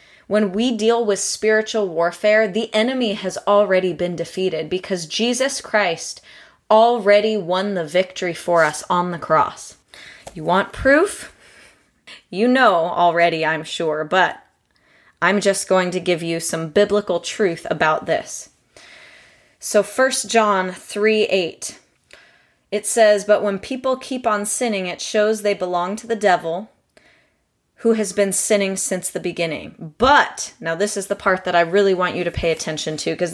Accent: American